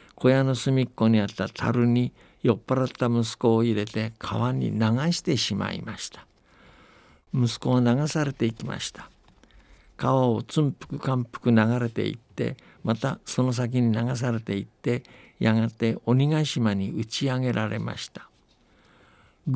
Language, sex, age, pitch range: Japanese, male, 60-79, 110-130 Hz